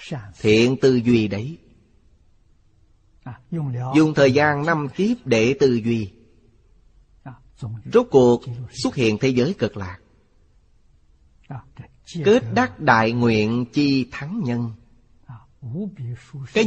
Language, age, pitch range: Vietnamese, 30-49, 115-145 Hz